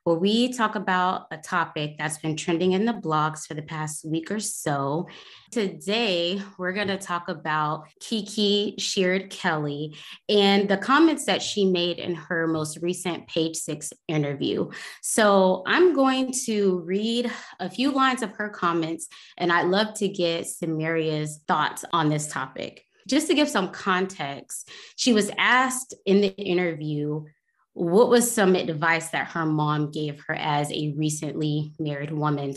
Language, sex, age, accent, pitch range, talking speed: English, female, 20-39, American, 155-195 Hz, 160 wpm